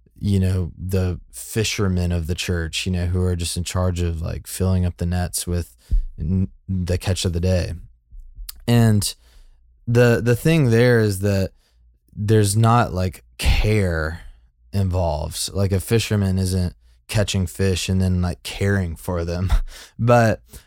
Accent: American